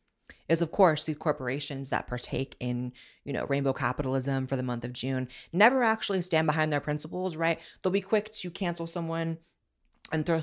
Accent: American